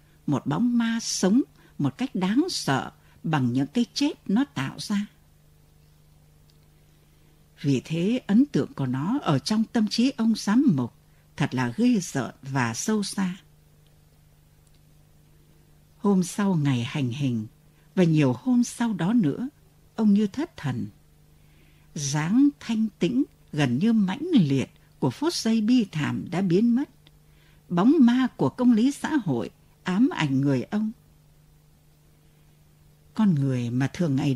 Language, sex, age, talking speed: Vietnamese, female, 60-79, 140 wpm